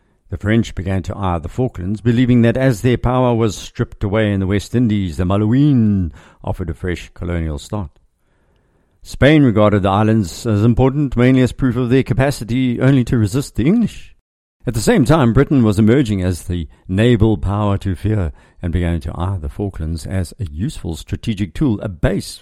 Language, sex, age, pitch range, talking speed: English, male, 50-69, 95-120 Hz, 185 wpm